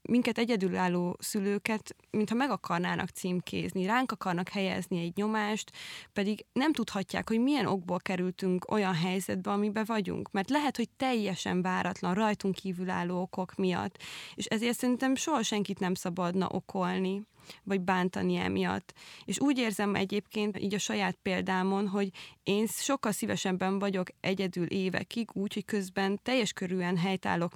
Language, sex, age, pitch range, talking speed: Hungarian, female, 20-39, 185-215 Hz, 140 wpm